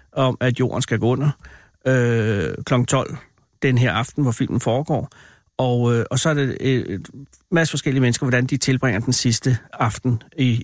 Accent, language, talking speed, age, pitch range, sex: native, Danish, 170 wpm, 60-79, 120-150 Hz, male